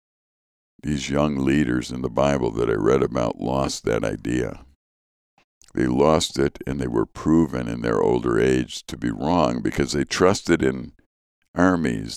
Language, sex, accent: English, male, American